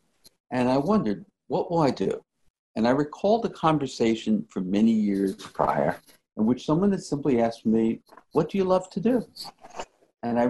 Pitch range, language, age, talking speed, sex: 110-160 Hz, English, 60-79, 175 wpm, male